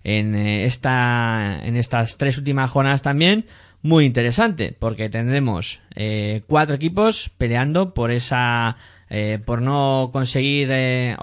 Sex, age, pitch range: male, 20-39, 115-140 Hz